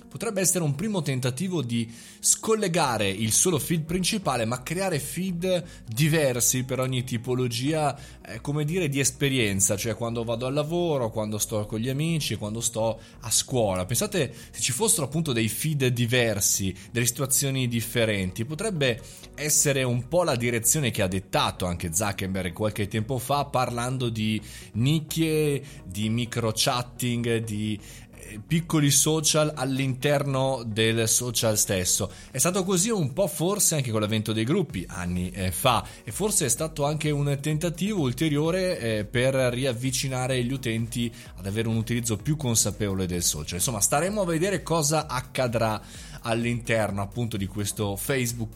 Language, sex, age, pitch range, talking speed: Italian, male, 20-39, 110-155 Hz, 145 wpm